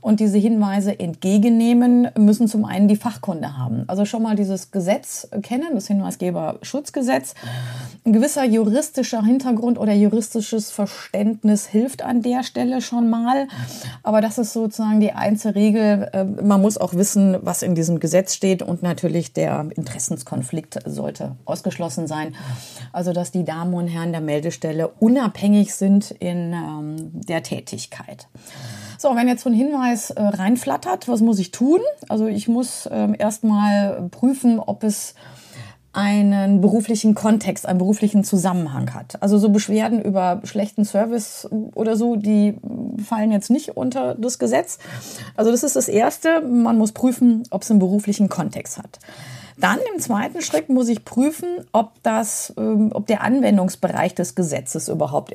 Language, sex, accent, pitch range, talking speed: German, female, German, 185-235 Hz, 145 wpm